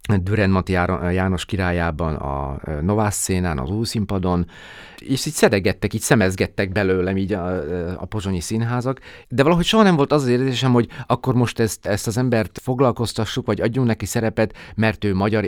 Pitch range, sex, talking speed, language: 95-120 Hz, male, 165 wpm, Hungarian